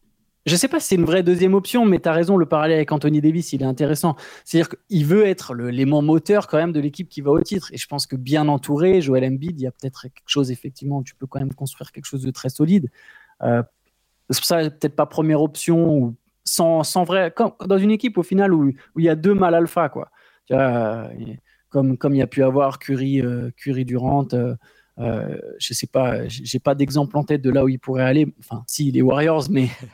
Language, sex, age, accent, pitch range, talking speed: French, male, 20-39, French, 130-160 Hz, 235 wpm